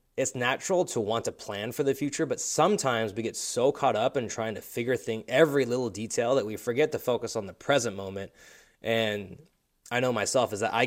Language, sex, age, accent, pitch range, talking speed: English, male, 20-39, American, 105-125 Hz, 220 wpm